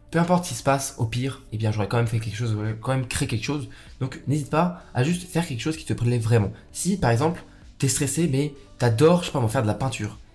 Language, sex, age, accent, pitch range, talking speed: French, male, 20-39, French, 110-150 Hz, 285 wpm